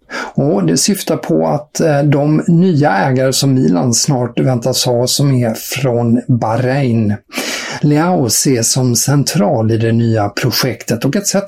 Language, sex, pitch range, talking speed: English, male, 115-145 Hz, 145 wpm